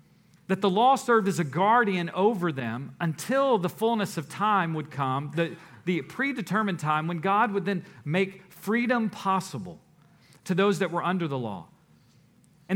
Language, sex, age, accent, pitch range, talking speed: English, male, 40-59, American, 130-190 Hz, 165 wpm